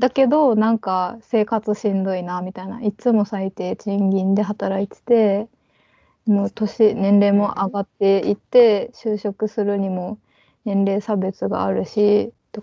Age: 20-39